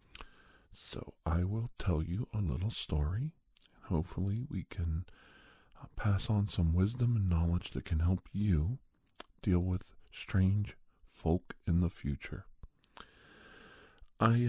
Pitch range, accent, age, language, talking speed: 80-100 Hz, American, 50-69, English, 125 wpm